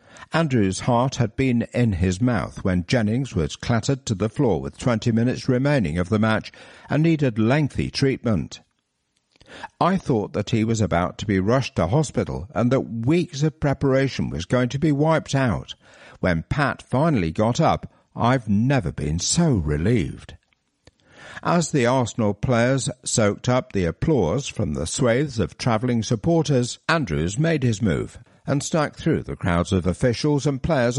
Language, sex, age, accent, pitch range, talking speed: English, male, 60-79, British, 105-135 Hz, 165 wpm